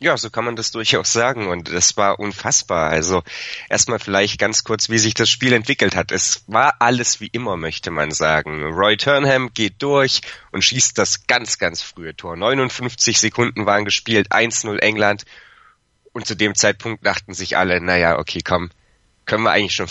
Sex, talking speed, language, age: male, 185 wpm, German, 30-49